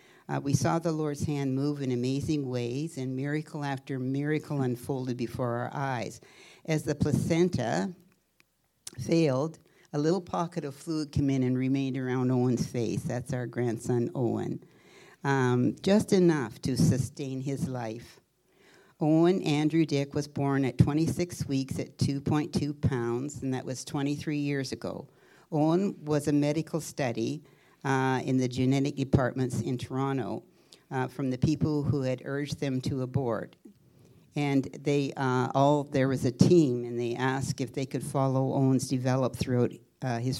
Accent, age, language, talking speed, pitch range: American, 60-79, English, 155 wpm, 130-155 Hz